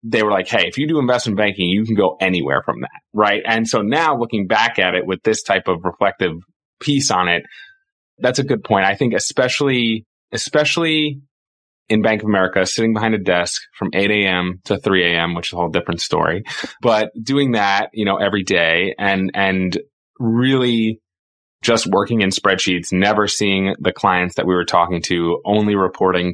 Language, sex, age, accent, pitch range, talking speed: English, male, 20-39, American, 90-110 Hz, 190 wpm